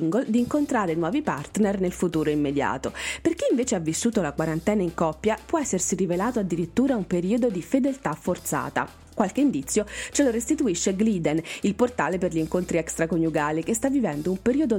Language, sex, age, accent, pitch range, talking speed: Italian, female, 30-49, native, 160-230 Hz, 170 wpm